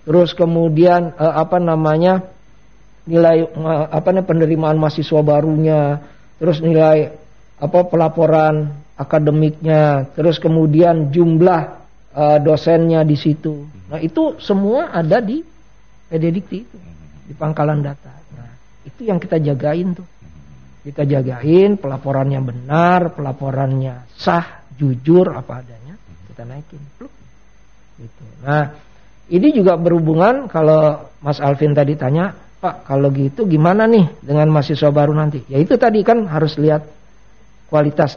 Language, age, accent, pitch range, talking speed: Indonesian, 50-69, native, 140-170 Hz, 120 wpm